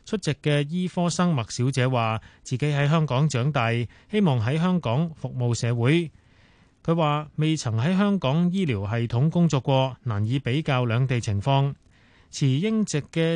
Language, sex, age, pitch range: Chinese, male, 20-39, 120-170 Hz